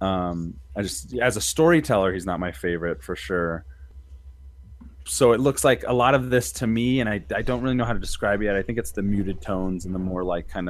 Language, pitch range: English, 70-105 Hz